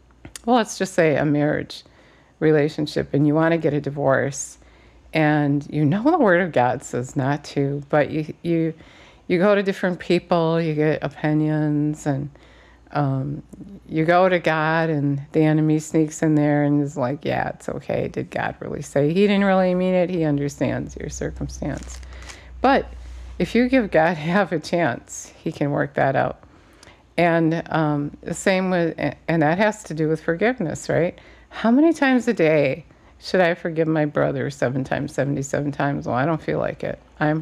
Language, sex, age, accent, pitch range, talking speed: English, female, 50-69, American, 145-175 Hz, 180 wpm